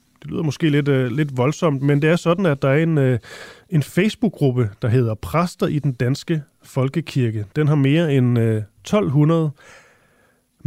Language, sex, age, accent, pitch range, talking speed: Danish, male, 30-49, native, 120-155 Hz, 155 wpm